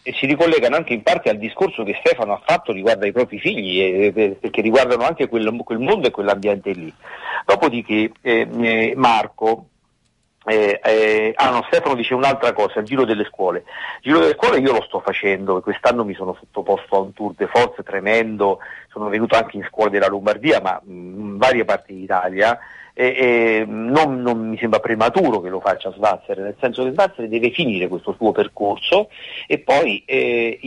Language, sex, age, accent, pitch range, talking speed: Italian, male, 50-69, native, 100-125 Hz, 185 wpm